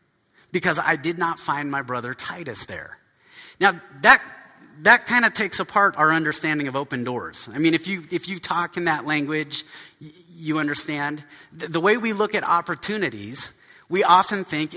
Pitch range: 135-185 Hz